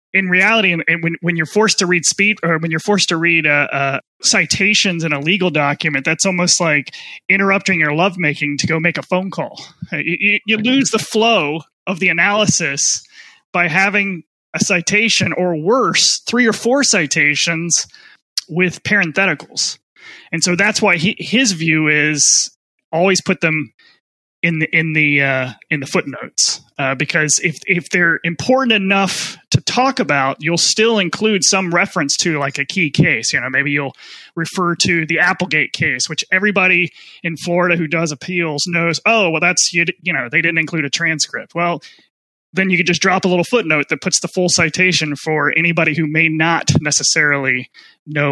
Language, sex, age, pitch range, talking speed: English, male, 20-39, 155-190 Hz, 180 wpm